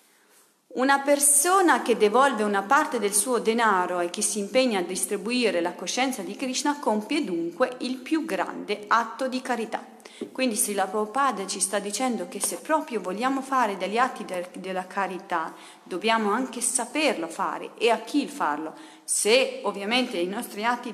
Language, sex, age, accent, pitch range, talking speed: Italian, female, 40-59, native, 195-260 Hz, 165 wpm